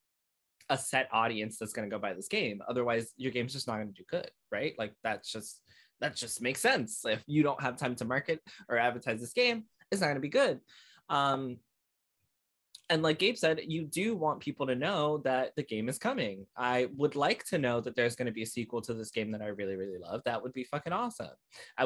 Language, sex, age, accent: English, male, 20-39, American